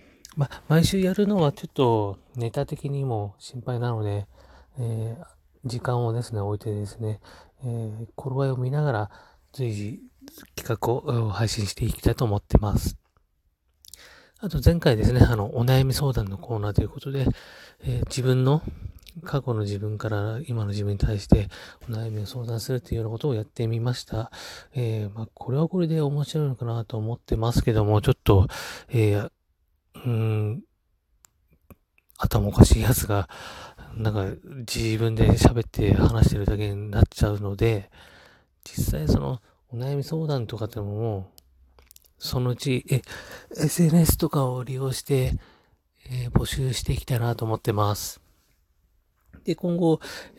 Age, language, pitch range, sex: 30-49, Japanese, 105-130 Hz, male